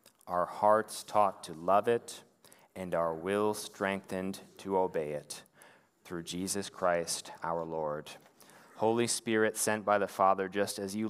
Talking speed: 145 wpm